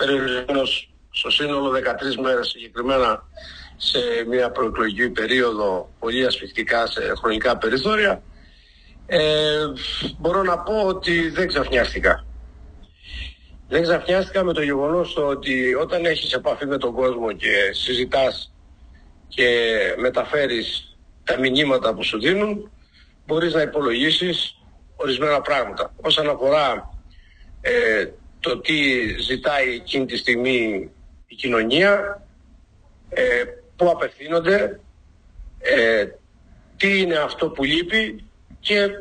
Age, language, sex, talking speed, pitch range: 50-69, English, male, 105 wpm, 115-185 Hz